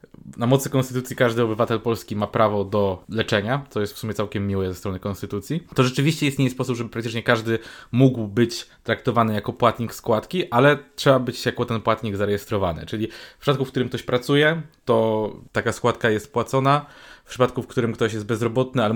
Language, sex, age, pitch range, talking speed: Polish, male, 20-39, 110-130 Hz, 185 wpm